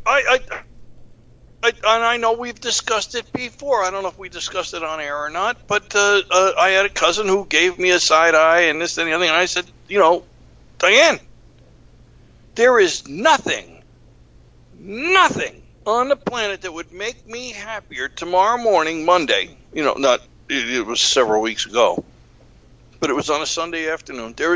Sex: male